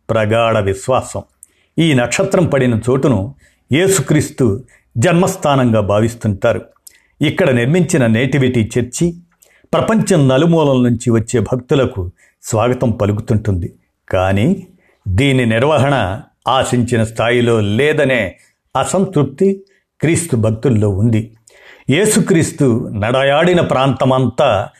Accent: native